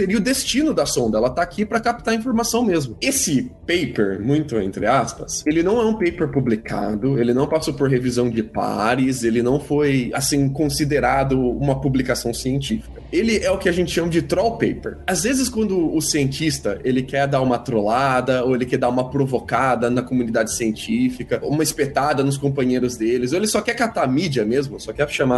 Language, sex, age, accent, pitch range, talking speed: Portuguese, male, 20-39, Brazilian, 135-210 Hz, 200 wpm